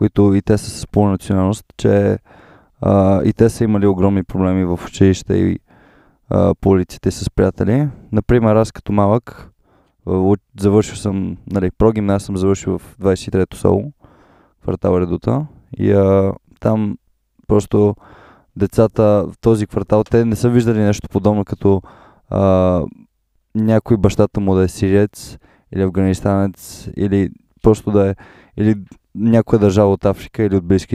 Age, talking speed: 20-39, 150 wpm